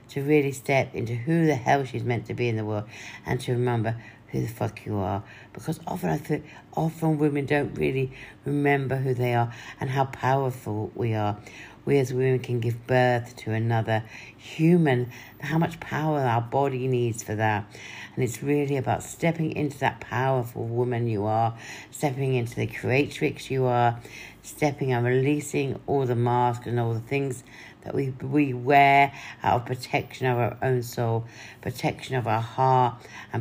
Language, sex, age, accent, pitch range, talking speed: English, female, 60-79, British, 115-140 Hz, 180 wpm